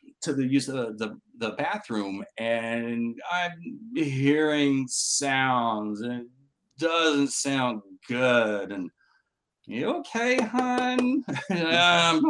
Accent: American